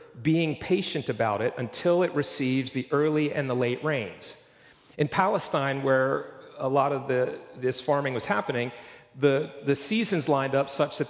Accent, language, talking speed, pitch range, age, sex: American, English, 160 wpm, 125-165 Hz, 40-59, male